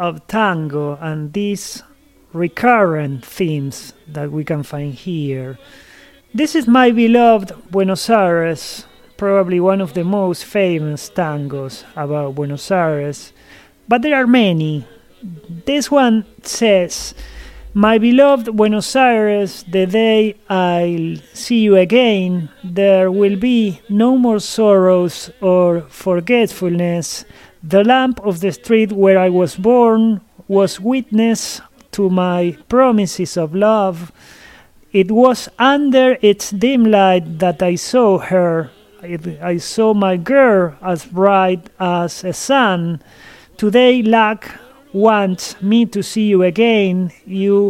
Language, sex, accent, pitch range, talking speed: English, male, Argentinian, 175-220 Hz, 120 wpm